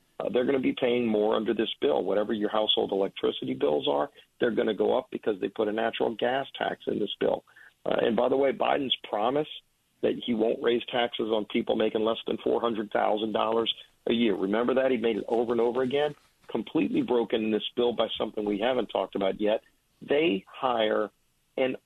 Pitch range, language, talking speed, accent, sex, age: 105-120 Hz, English, 205 wpm, American, male, 40-59